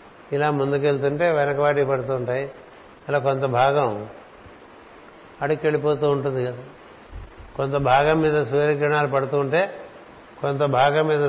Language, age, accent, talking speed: Telugu, 60-79, native, 95 wpm